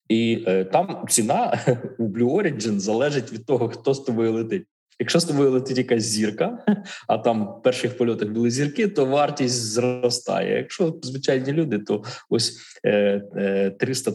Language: Ukrainian